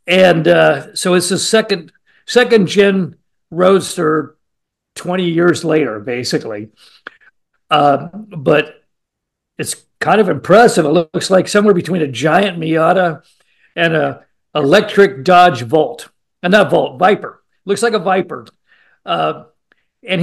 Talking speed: 120 wpm